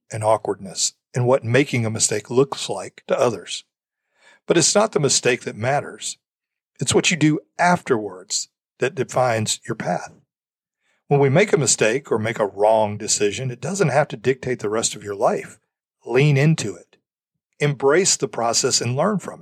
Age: 40-59